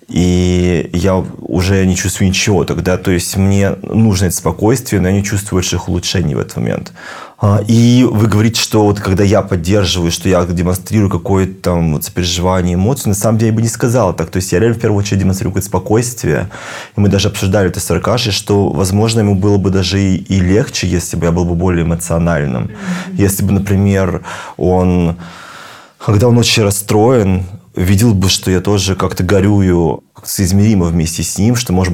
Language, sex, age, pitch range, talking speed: Russian, male, 20-39, 90-105 Hz, 185 wpm